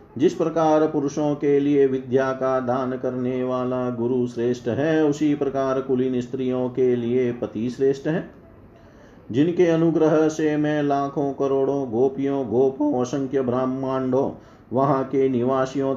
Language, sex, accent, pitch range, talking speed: Hindi, male, native, 125-145 Hz, 130 wpm